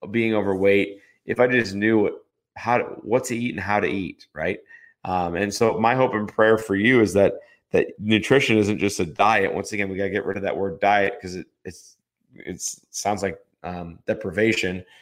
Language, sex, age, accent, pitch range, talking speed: English, male, 30-49, American, 95-110 Hz, 210 wpm